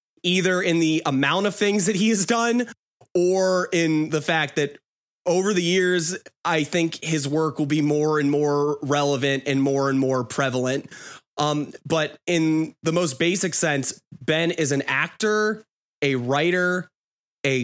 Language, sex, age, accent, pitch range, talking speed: English, male, 20-39, American, 145-175 Hz, 160 wpm